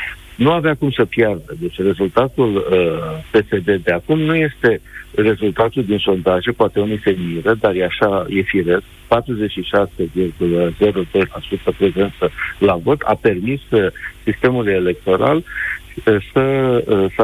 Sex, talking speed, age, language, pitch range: male, 125 wpm, 50-69, Romanian, 95-115 Hz